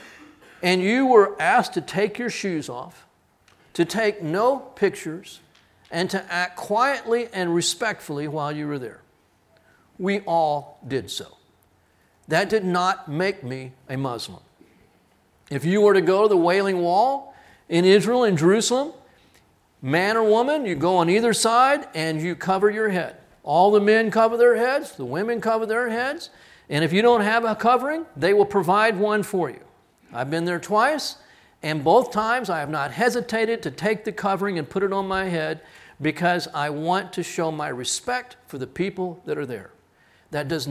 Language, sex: English, male